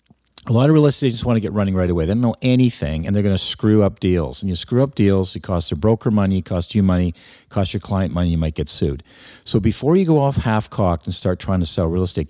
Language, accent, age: English, American, 40-59